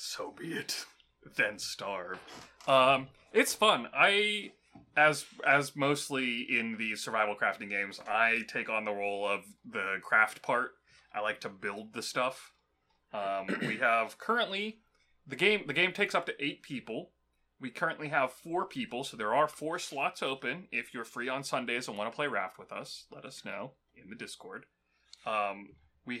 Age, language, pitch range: 30-49, English, 100-145 Hz